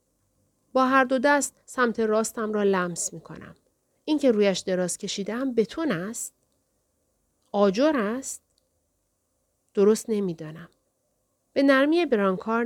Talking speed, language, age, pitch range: 115 wpm, Persian, 40-59, 190-245 Hz